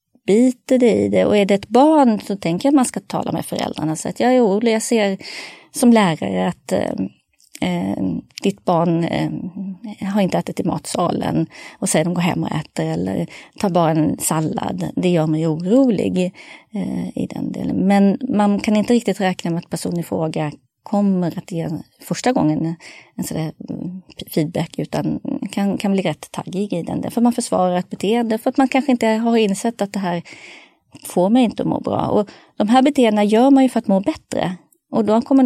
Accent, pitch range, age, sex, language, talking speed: Swedish, 175-235 Hz, 30-49, female, English, 200 wpm